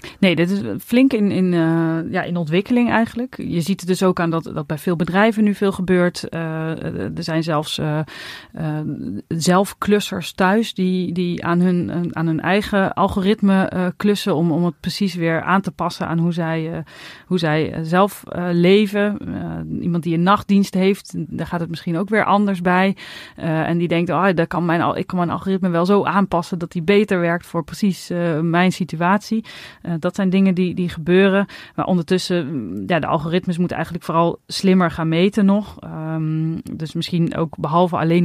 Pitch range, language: 165-190 Hz, Dutch